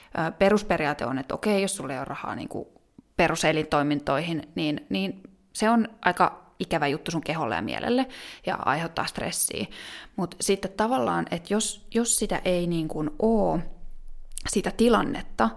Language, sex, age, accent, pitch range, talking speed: Finnish, female, 20-39, native, 165-205 Hz, 145 wpm